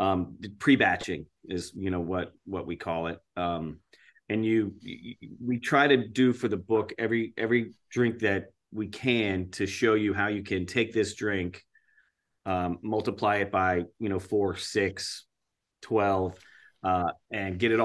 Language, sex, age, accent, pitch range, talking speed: English, male, 30-49, American, 90-110 Hz, 165 wpm